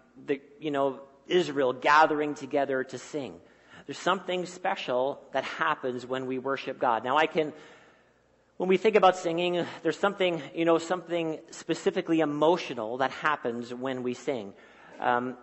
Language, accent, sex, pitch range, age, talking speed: English, American, male, 130-170 Hz, 40-59, 150 wpm